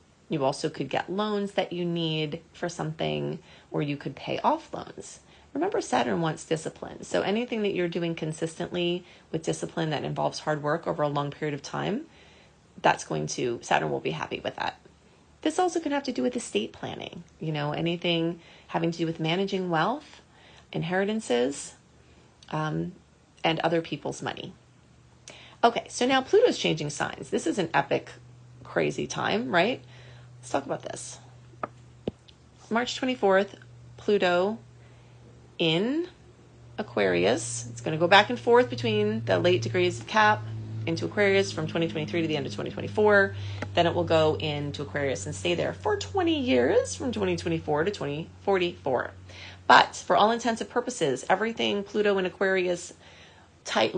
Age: 30-49